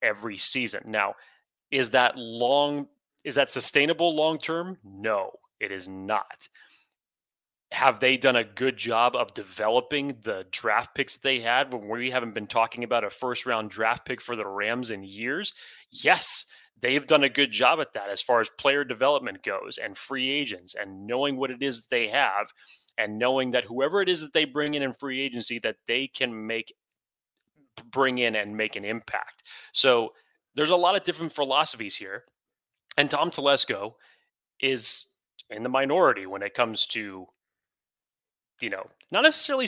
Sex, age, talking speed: male, 30-49, 175 wpm